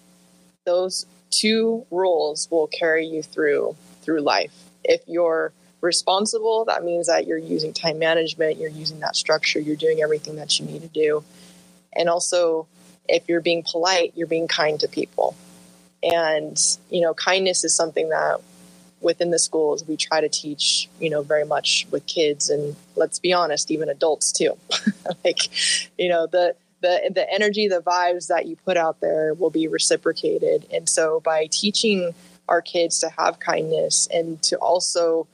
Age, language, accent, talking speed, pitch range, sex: 20-39, English, American, 165 wpm, 150-180 Hz, female